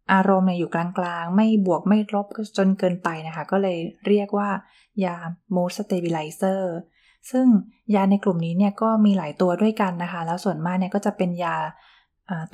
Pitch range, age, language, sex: 170-205 Hz, 20-39, Thai, female